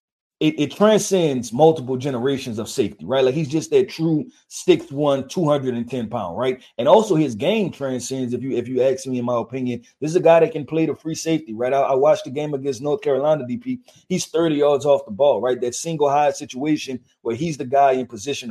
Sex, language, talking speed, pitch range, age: male, English, 235 wpm, 130-175 Hz, 30-49